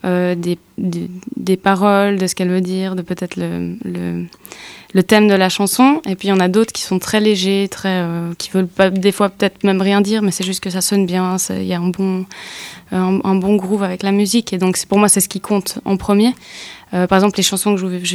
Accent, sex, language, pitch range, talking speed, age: French, female, English, 185-200 Hz, 265 wpm, 20-39